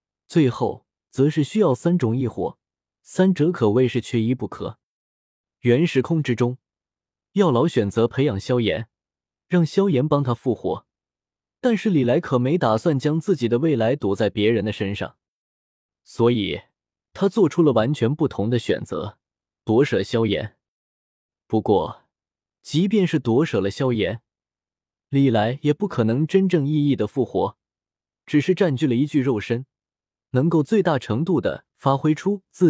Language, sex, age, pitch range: Chinese, male, 20-39, 110-165 Hz